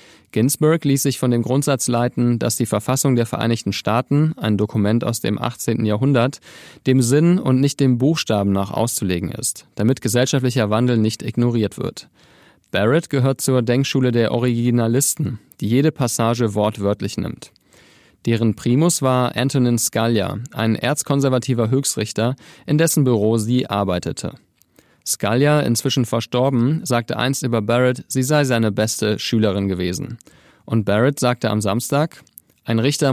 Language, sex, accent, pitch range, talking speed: German, male, German, 115-135 Hz, 140 wpm